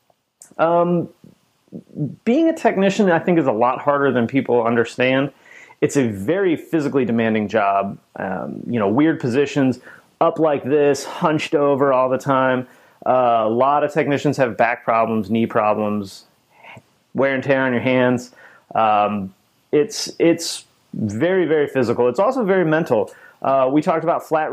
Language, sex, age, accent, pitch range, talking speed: English, male, 30-49, American, 115-145 Hz, 155 wpm